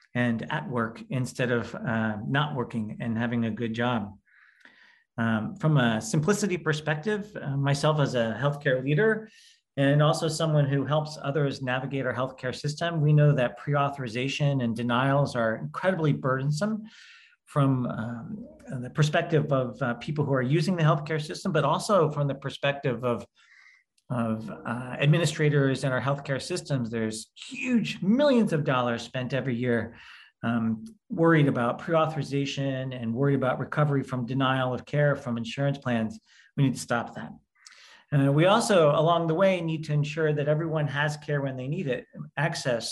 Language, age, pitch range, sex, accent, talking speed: English, 40-59, 125-155 Hz, male, American, 160 wpm